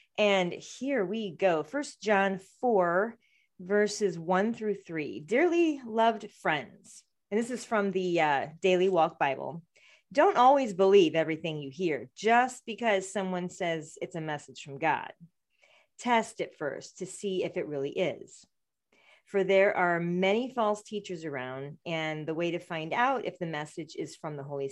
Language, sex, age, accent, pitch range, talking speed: English, female, 40-59, American, 155-210 Hz, 165 wpm